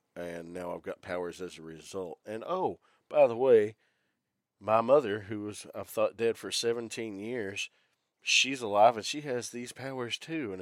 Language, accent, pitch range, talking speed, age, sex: English, American, 90-120 Hz, 175 wpm, 40-59, male